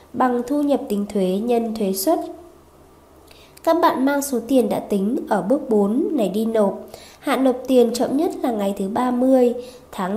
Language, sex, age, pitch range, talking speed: Vietnamese, female, 20-39, 215-270 Hz, 185 wpm